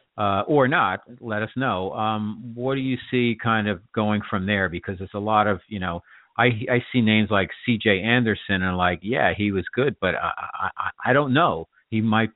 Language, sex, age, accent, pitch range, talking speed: English, male, 50-69, American, 100-110 Hz, 215 wpm